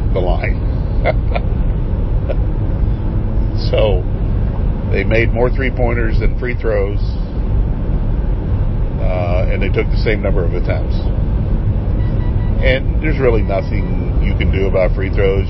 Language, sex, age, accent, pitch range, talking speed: English, male, 50-69, American, 85-105 Hz, 115 wpm